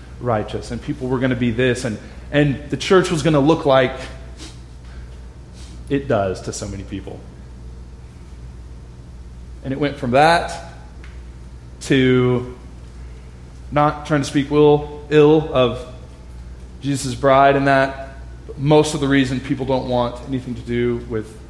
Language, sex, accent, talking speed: English, male, American, 140 wpm